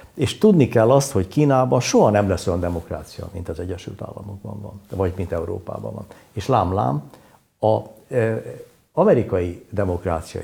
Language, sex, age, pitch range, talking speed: Hungarian, male, 60-79, 95-120 Hz, 145 wpm